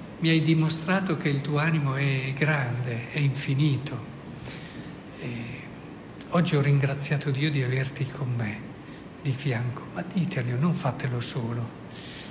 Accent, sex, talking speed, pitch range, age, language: native, male, 125 wpm, 130-160 Hz, 60-79, Italian